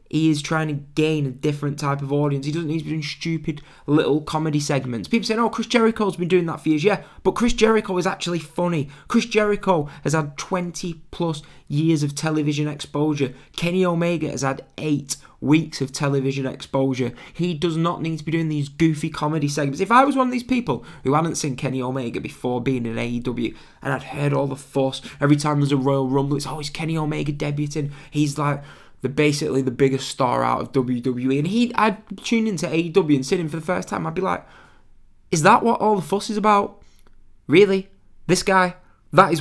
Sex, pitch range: male, 135-170 Hz